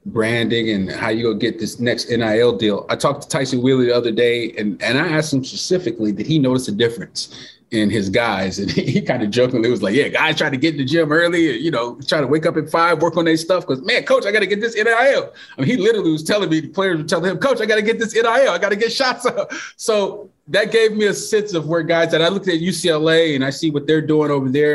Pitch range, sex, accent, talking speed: 125-170 Hz, male, American, 285 wpm